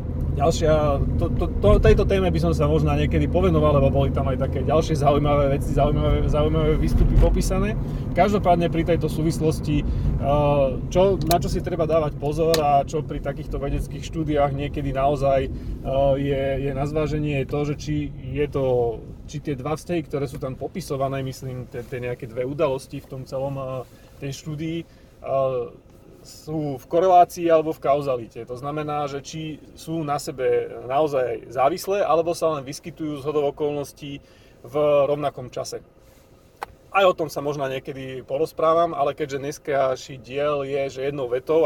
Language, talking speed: Slovak, 155 wpm